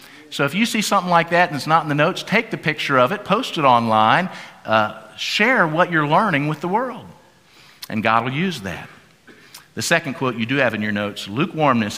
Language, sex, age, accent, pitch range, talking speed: English, male, 50-69, American, 125-195 Hz, 220 wpm